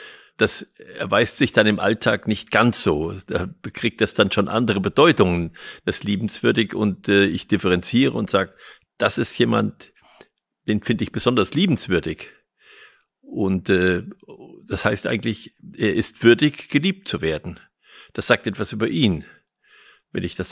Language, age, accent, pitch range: German, 50-69, German, 95-115 Hz